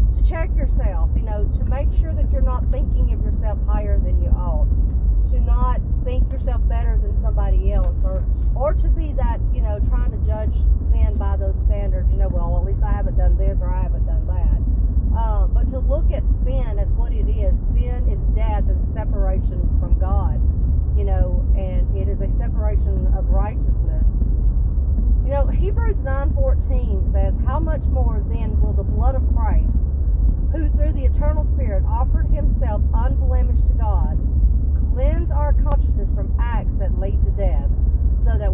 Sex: female